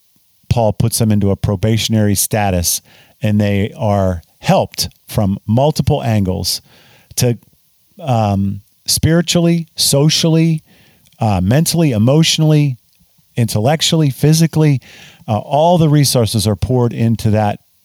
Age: 50-69